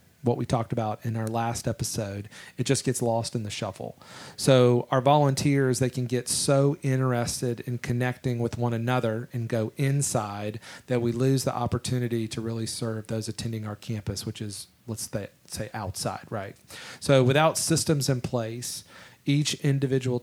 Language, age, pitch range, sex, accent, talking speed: English, 40-59, 115-130 Hz, male, American, 165 wpm